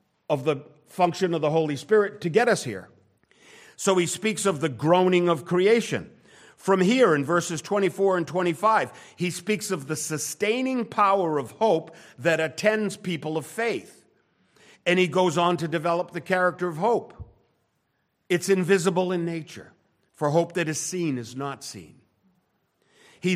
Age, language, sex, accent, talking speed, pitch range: 50-69, English, male, American, 160 wpm, 145-205 Hz